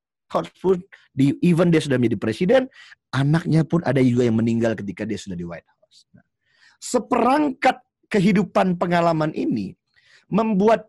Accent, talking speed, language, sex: native, 140 wpm, Indonesian, male